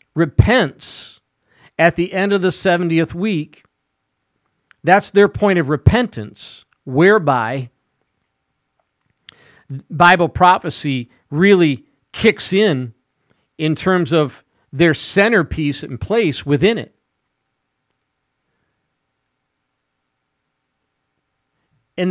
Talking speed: 80 wpm